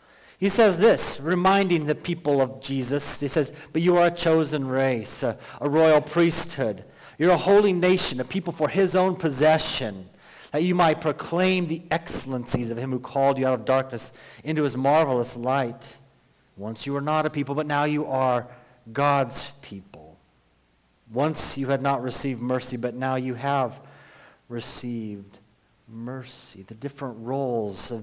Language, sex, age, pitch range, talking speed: English, male, 40-59, 125-160 Hz, 165 wpm